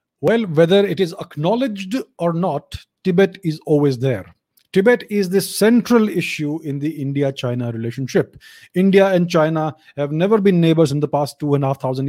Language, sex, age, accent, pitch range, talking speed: English, male, 30-49, Indian, 150-190 Hz, 175 wpm